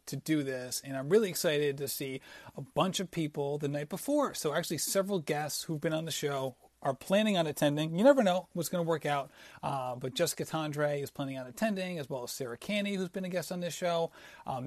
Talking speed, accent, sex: 235 wpm, American, male